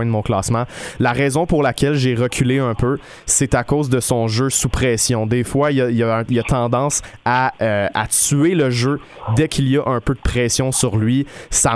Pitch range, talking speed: 115-135 Hz, 215 wpm